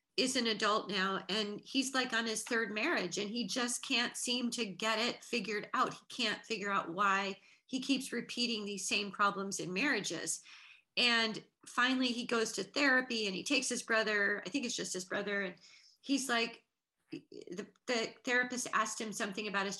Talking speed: 190 wpm